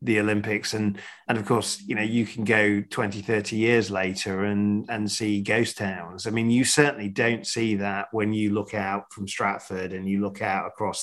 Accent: British